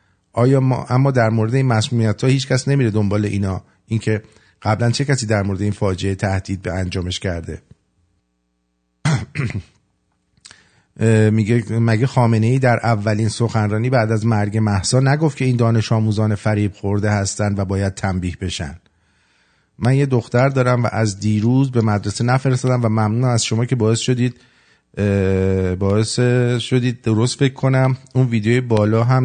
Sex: male